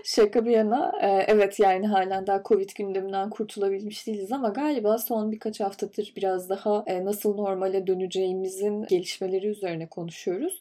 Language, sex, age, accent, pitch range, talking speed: Turkish, female, 20-39, native, 190-220 Hz, 135 wpm